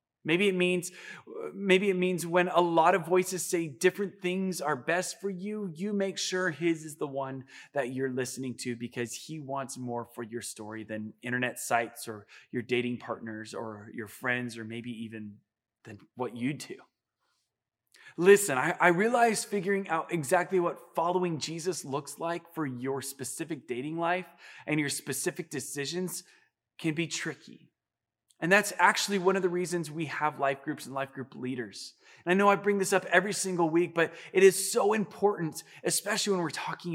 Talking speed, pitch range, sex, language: 180 wpm, 130-185 Hz, male, English